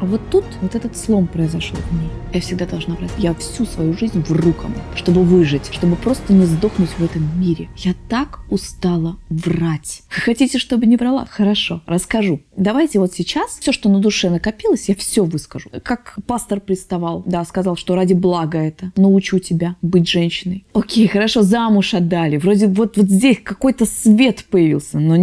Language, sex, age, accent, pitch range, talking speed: Russian, female, 20-39, native, 175-225 Hz, 175 wpm